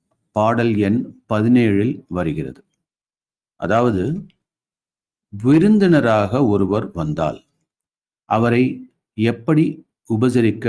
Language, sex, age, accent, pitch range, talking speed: Tamil, male, 50-69, native, 110-150 Hz, 60 wpm